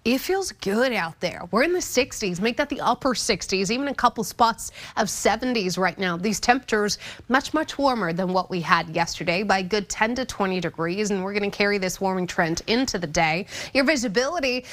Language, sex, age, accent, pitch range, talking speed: English, female, 30-49, American, 185-245 Hz, 210 wpm